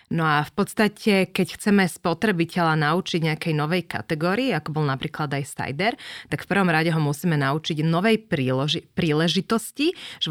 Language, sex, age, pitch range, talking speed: Slovak, female, 20-39, 155-190 Hz, 155 wpm